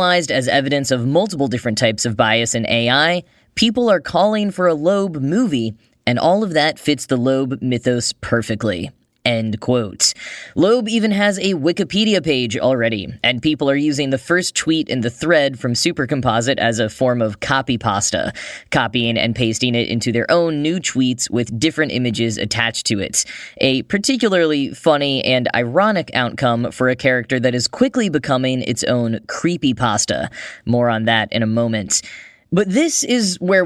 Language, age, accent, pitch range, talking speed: English, 10-29, American, 120-165 Hz, 170 wpm